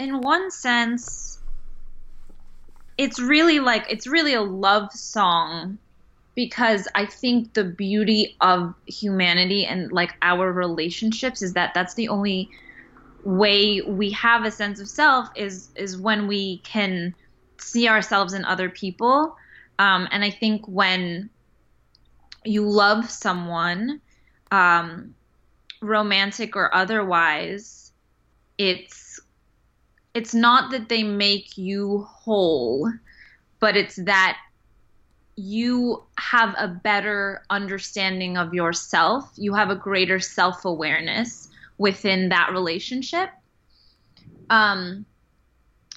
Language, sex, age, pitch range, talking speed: English, female, 20-39, 185-225 Hz, 110 wpm